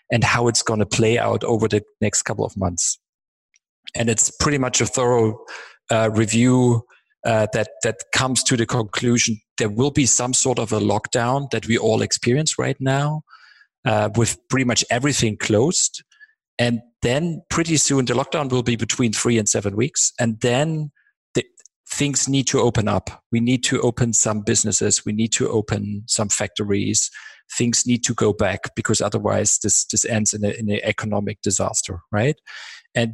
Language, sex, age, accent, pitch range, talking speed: English, male, 40-59, German, 110-130 Hz, 175 wpm